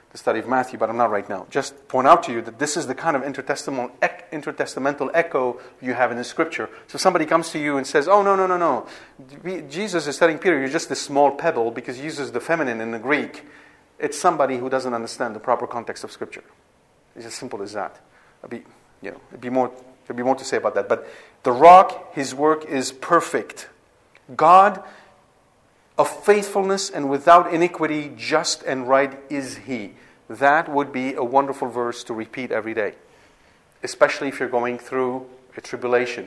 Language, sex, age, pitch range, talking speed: English, male, 40-59, 125-155 Hz, 195 wpm